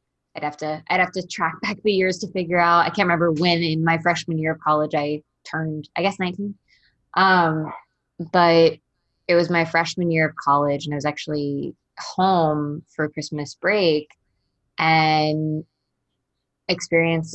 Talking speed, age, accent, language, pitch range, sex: 165 wpm, 20-39, American, English, 150-170 Hz, female